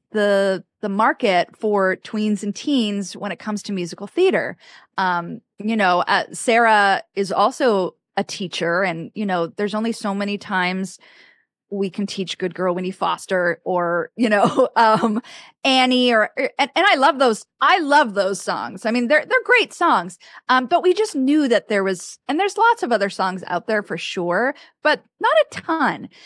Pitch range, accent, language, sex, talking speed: 185-235 Hz, American, English, female, 185 wpm